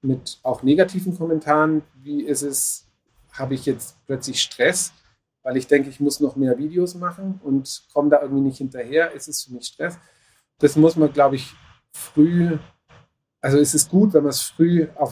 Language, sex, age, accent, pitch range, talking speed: German, male, 40-59, German, 130-150 Hz, 185 wpm